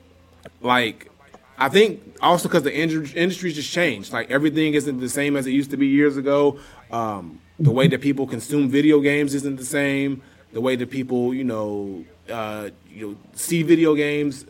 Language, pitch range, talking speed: English, 115-140 Hz, 185 wpm